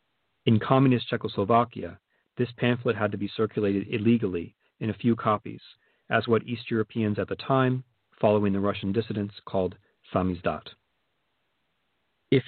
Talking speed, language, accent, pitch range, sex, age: 135 wpm, English, American, 105-125 Hz, male, 40-59